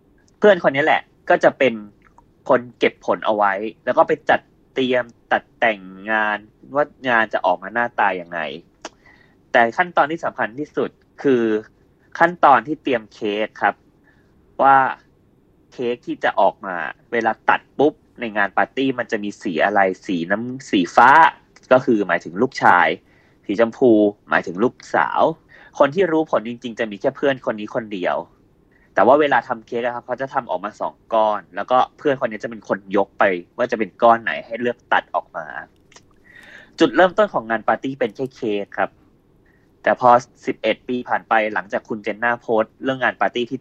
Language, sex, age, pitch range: Thai, male, 20-39, 110-135 Hz